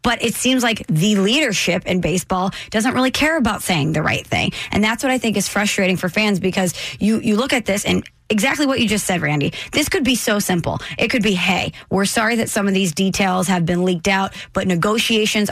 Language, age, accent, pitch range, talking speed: English, 20-39, American, 190-230 Hz, 230 wpm